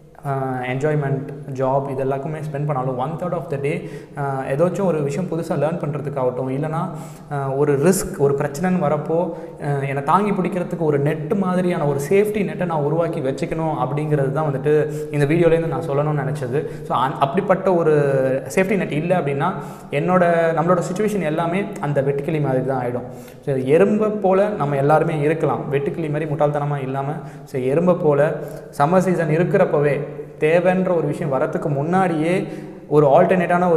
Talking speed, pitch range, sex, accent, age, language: 90 wpm, 140-175 Hz, male, Indian, 20-39, English